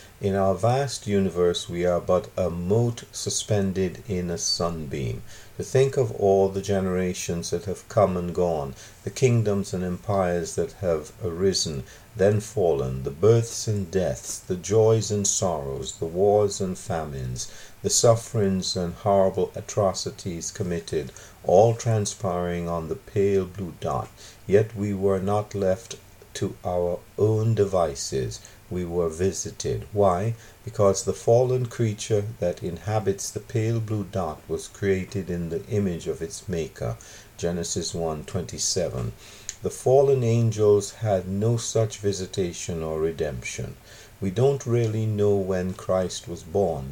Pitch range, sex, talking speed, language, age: 90-110 Hz, male, 140 wpm, English, 50-69